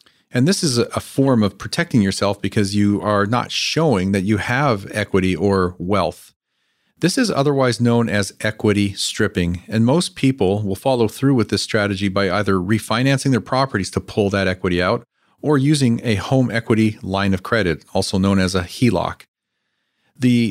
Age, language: 40-59, English